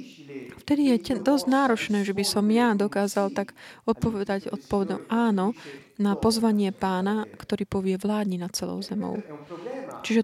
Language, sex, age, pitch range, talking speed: Slovak, female, 20-39, 195-235 Hz, 140 wpm